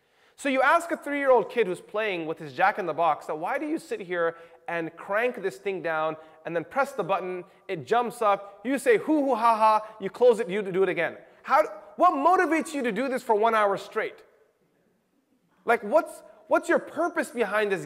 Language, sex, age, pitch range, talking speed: English, male, 20-39, 190-290 Hz, 200 wpm